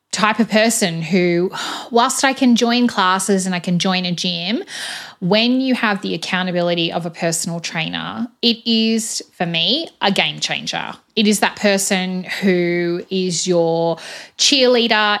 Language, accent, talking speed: English, Australian, 155 wpm